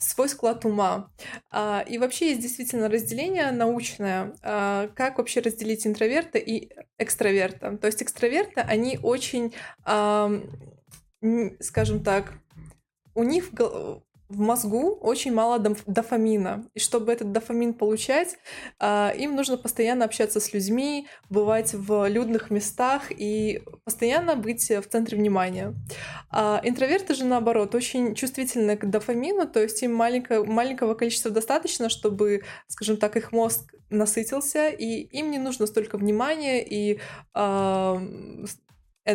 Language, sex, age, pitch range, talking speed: Russian, female, 20-39, 210-250 Hz, 120 wpm